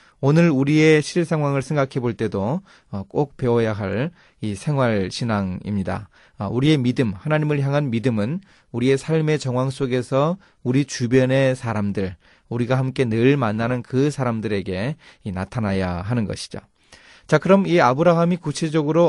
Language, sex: Korean, male